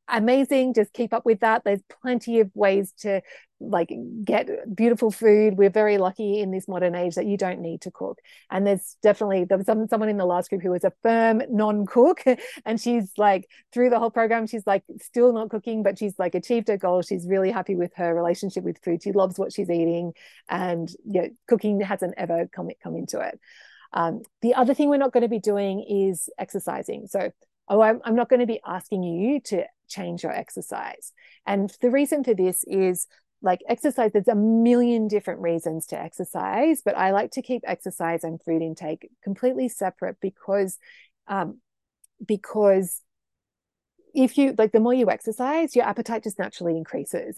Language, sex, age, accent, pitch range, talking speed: English, female, 30-49, Australian, 185-235 Hz, 195 wpm